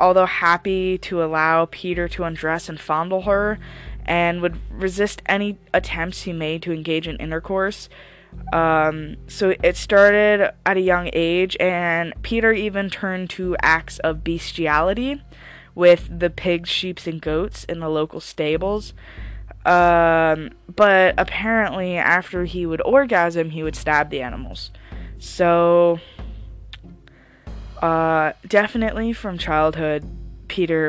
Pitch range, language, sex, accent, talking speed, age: 155-185 Hz, English, female, American, 125 wpm, 10-29